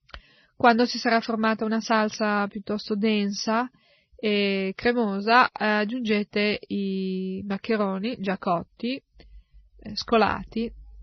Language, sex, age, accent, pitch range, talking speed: Italian, female, 20-39, native, 200-225 Hz, 100 wpm